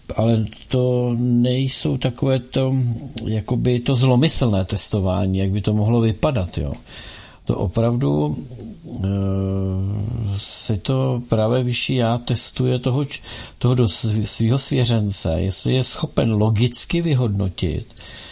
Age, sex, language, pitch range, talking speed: 60-79, male, Czech, 105-130 Hz, 105 wpm